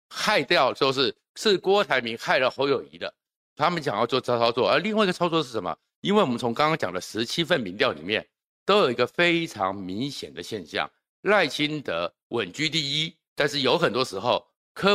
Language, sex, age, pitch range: Chinese, male, 50-69, 125-180 Hz